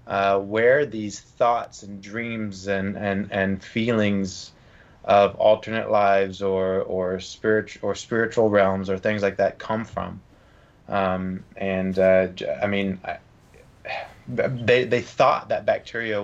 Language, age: English, 20-39